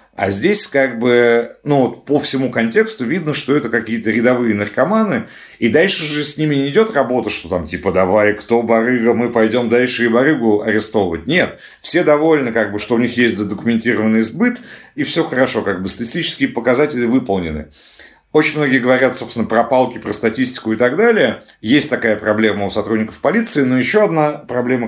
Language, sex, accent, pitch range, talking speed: Russian, male, native, 105-130 Hz, 180 wpm